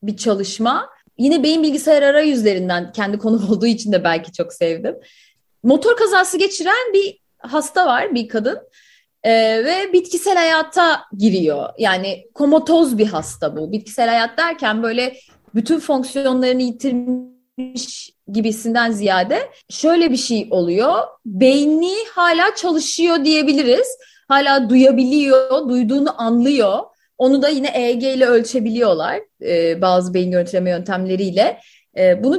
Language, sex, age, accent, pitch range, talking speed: Turkish, female, 30-49, native, 220-335 Hz, 120 wpm